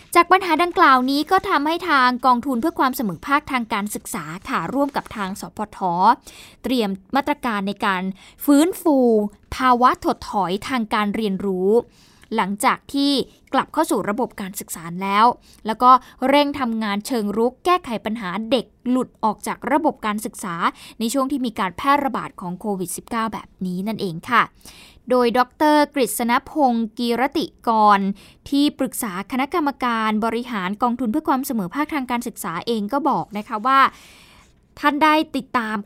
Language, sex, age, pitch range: Thai, female, 20-39, 215-285 Hz